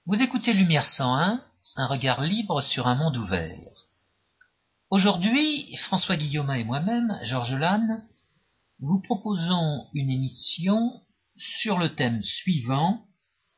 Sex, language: male, French